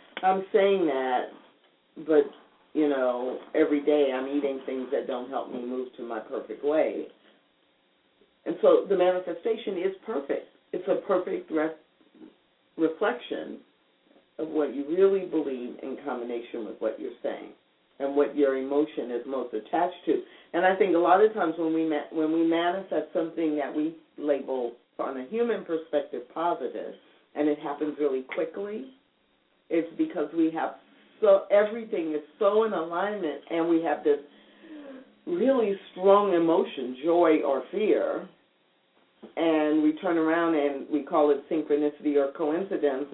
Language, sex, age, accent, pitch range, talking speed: English, female, 50-69, American, 140-180 Hz, 145 wpm